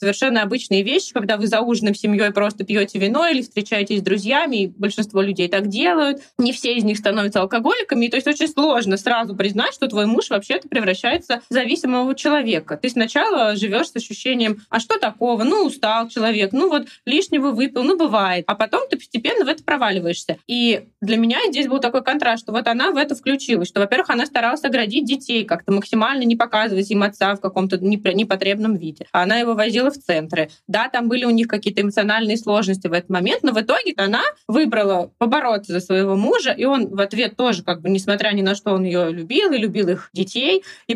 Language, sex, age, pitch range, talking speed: Russian, female, 20-39, 200-260 Hz, 205 wpm